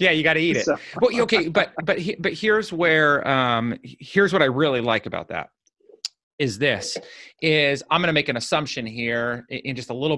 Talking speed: 190 wpm